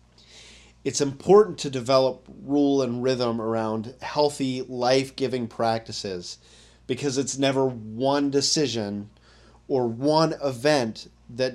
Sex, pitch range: male, 90-130 Hz